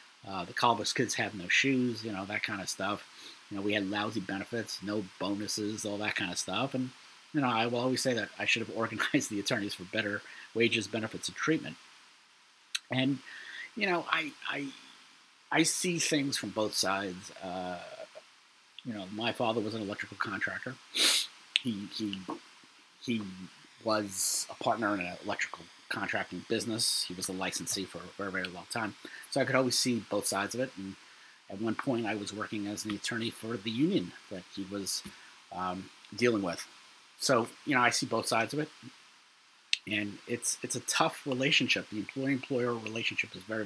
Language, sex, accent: English, male, American